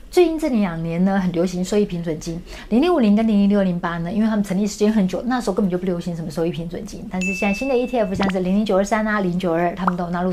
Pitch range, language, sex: 180-225 Hz, Chinese, female